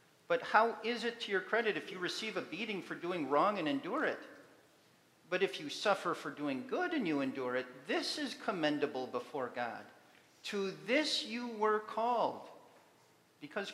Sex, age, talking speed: male, 50-69, 175 wpm